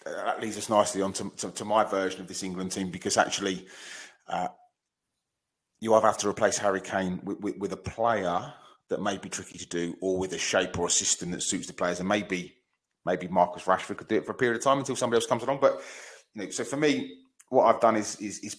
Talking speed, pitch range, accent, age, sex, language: 245 wpm, 95-120 Hz, British, 30-49, male, English